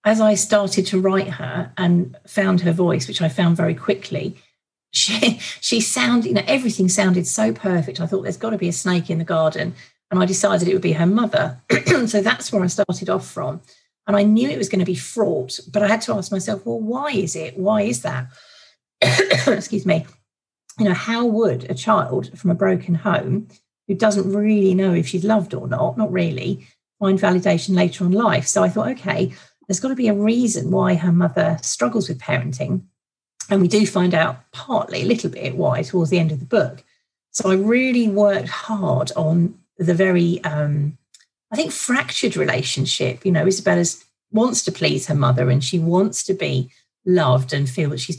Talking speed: 205 wpm